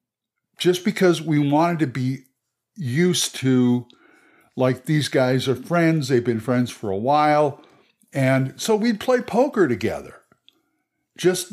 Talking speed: 135 wpm